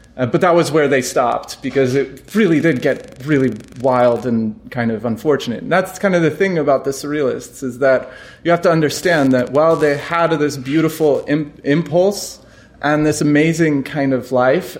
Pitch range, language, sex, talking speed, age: 125-155 Hz, English, male, 185 wpm, 30-49